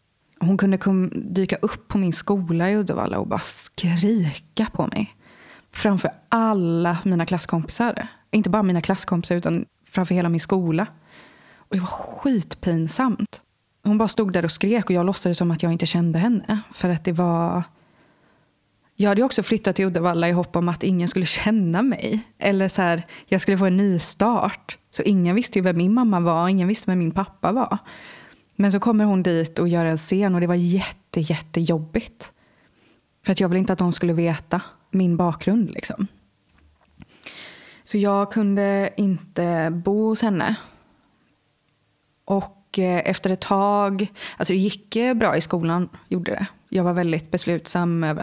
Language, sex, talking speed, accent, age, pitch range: Swedish, female, 175 wpm, native, 20-39, 170-200 Hz